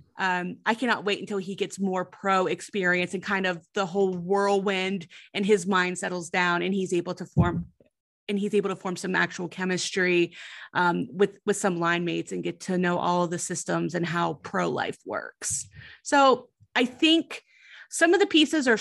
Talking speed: 195 wpm